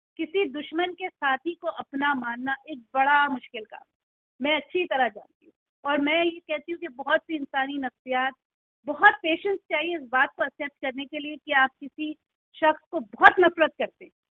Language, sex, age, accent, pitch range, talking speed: English, female, 40-59, Indian, 285-345 Hz, 190 wpm